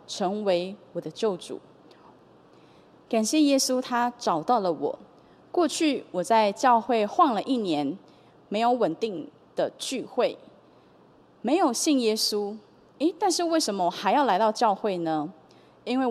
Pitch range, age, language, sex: 190-265 Hz, 20-39, Chinese, female